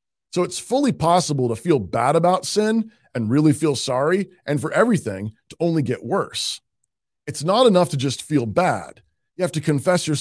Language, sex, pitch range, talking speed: English, male, 125-175 Hz, 190 wpm